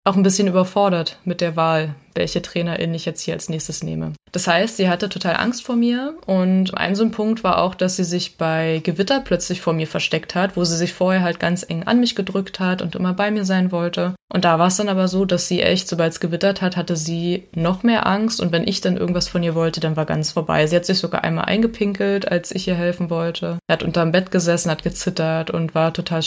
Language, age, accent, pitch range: German, 20-39, German, 160-185 Hz